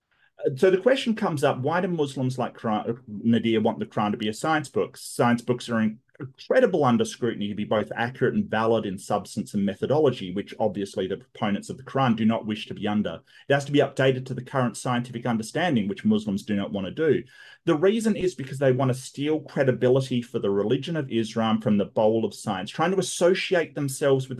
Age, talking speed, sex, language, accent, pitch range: 30-49, 215 wpm, male, English, Australian, 115-150 Hz